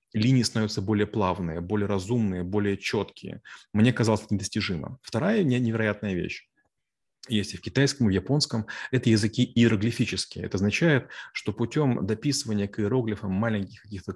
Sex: male